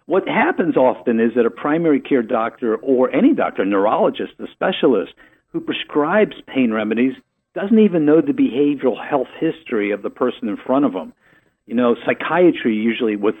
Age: 50-69